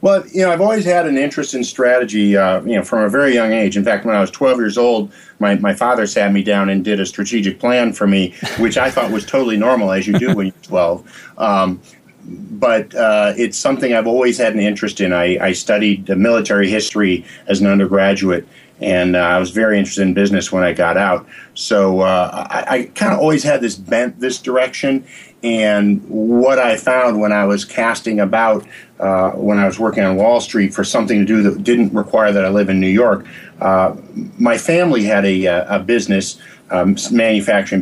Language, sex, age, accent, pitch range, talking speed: English, male, 50-69, American, 95-120 Hz, 210 wpm